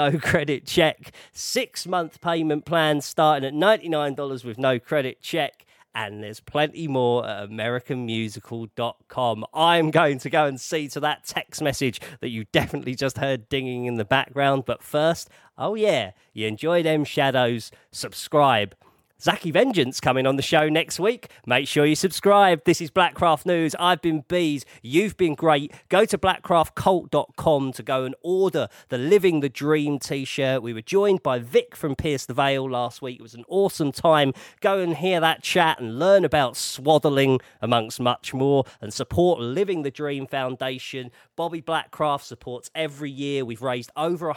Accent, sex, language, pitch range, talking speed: British, male, English, 130-160 Hz, 170 wpm